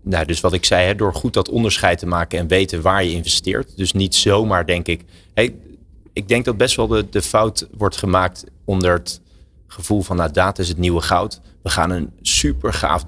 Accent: Dutch